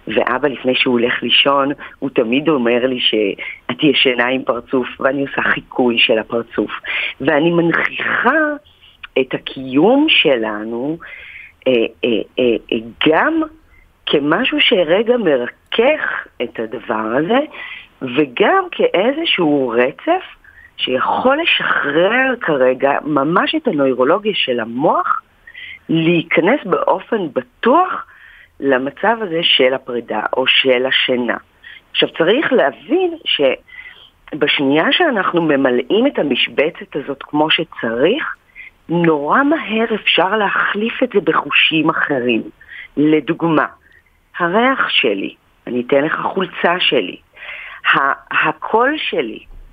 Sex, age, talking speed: female, 40-59, 100 wpm